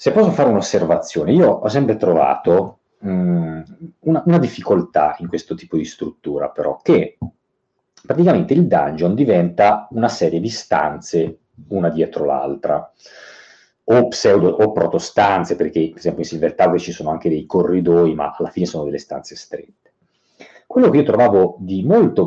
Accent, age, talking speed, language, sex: native, 40-59, 155 wpm, Italian, male